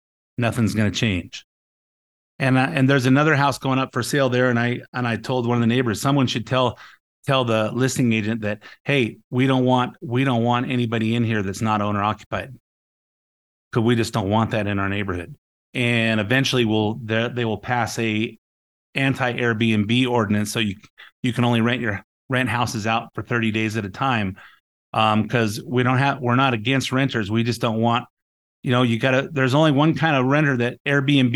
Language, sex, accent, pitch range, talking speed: English, male, American, 115-135 Hz, 205 wpm